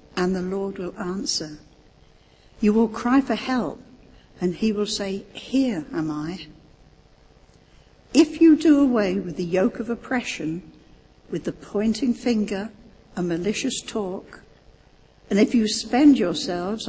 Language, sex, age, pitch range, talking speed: English, female, 60-79, 175-230 Hz, 135 wpm